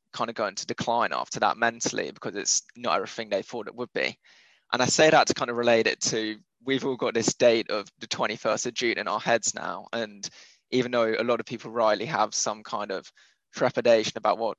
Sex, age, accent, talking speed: male, 20-39, British, 230 wpm